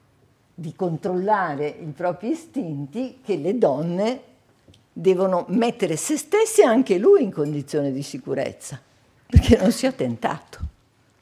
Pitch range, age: 145-200 Hz, 50-69